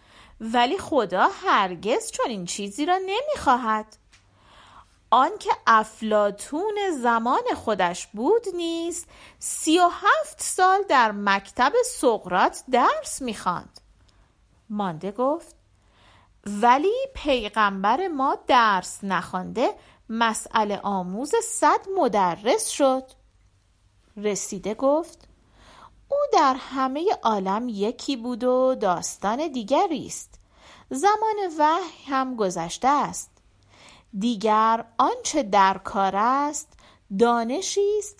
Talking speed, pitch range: 95 wpm, 210-315 Hz